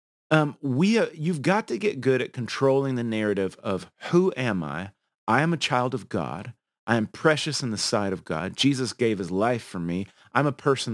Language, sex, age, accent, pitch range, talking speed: English, male, 30-49, American, 110-140 Hz, 215 wpm